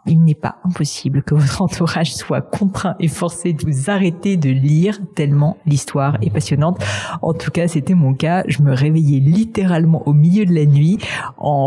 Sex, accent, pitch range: female, French, 140-170 Hz